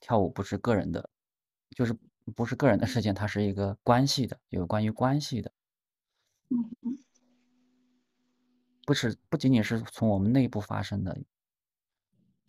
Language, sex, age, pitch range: Chinese, male, 20-39, 100-130 Hz